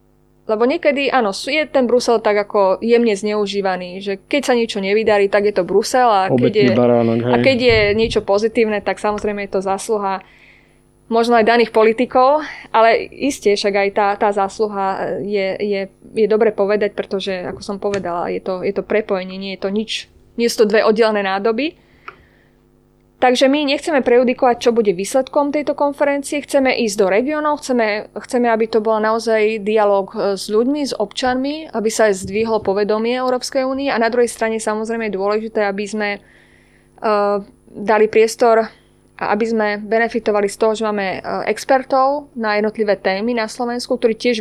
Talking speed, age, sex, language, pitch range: 170 wpm, 20-39, female, Slovak, 200-240 Hz